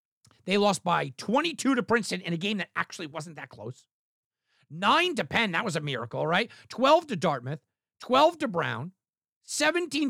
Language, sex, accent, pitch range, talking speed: English, male, American, 145-240 Hz, 170 wpm